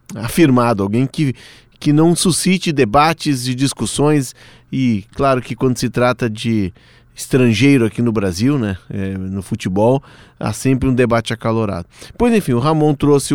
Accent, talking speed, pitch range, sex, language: Brazilian, 150 wpm, 115-140 Hz, male, Portuguese